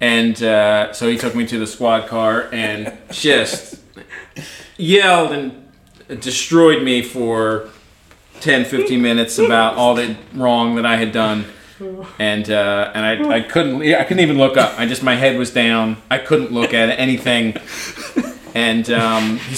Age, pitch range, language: 30-49, 115-160 Hz, English